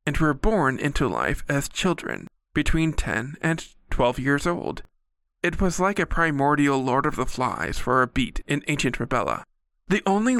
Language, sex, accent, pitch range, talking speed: English, male, American, 125-165 Hz, 175 wpm